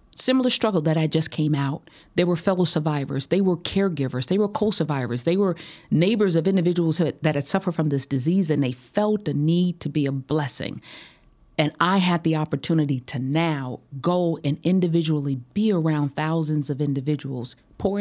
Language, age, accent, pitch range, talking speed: English, 40-59, American, 145-195 Hz, 175 wpm